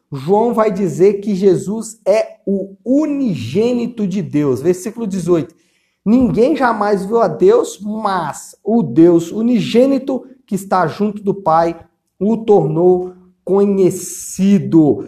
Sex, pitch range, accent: male, 180-235 Hz, Brazilian